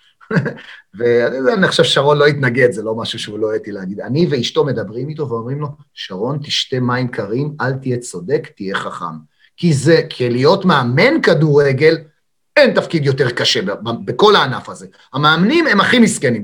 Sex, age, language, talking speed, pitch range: male, 30-49, Hebrew, 165 wpm, 130-175 Hz